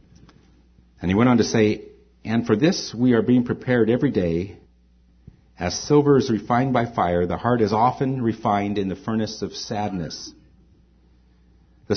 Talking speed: 160 wpm